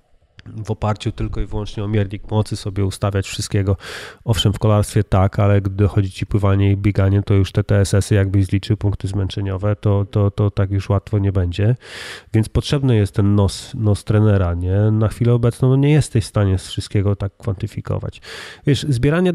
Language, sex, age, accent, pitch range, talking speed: Polish, male, 30-49, native, 100-130 Hz, 175 wpm